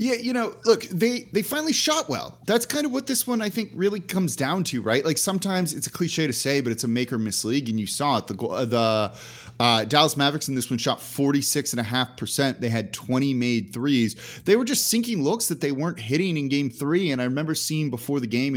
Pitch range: 120-175 Hz